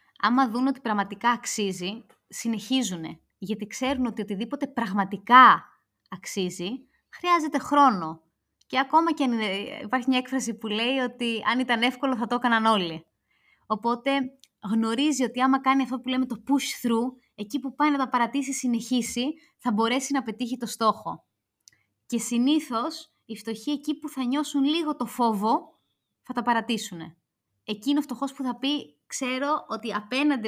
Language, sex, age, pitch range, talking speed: Greek, female, 20-39, 210-265 Hz, 150 wpm